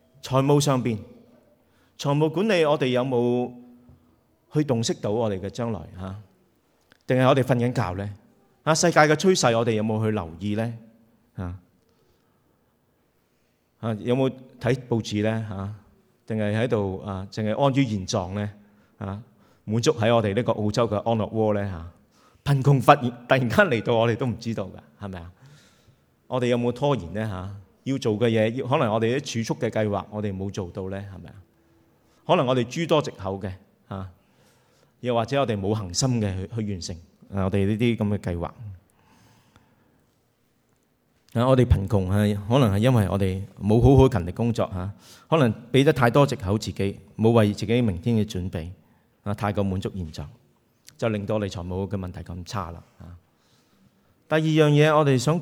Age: 30-49